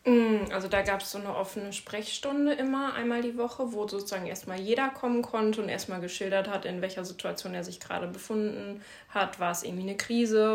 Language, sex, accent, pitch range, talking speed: German, female, German, 190-215 Hz, 200 wpm